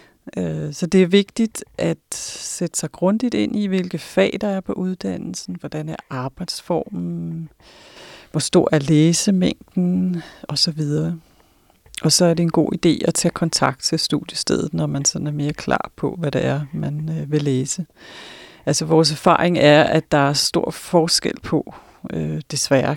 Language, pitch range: Danish, 150-180 Hz